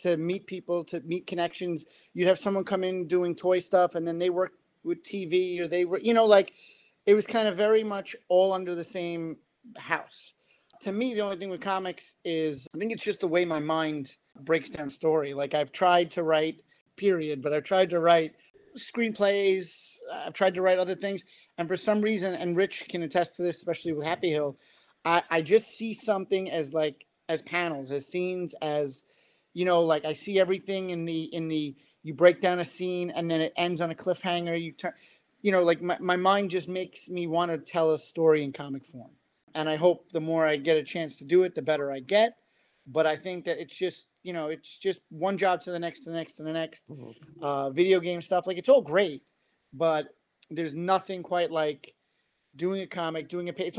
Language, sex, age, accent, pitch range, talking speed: English, male, 30-49, American, 160-190 Hz, 220 wpm